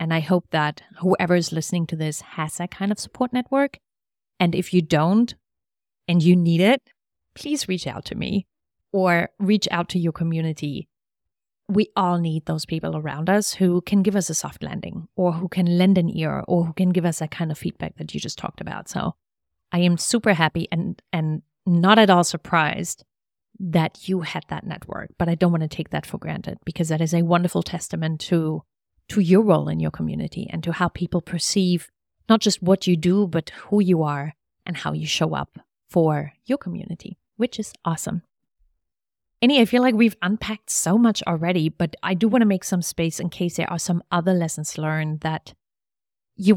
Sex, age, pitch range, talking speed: female, 30-49, 160-195 Hz, 205 wpm